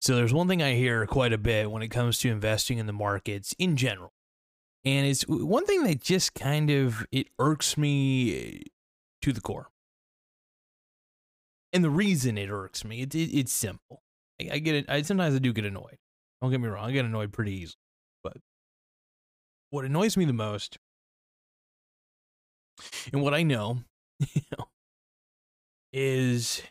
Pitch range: 110-150 Hz